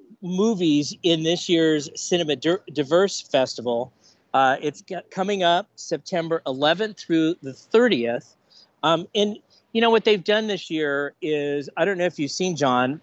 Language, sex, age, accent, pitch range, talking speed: English, male, 40-59, American, 140-180 Hz, 150 wpm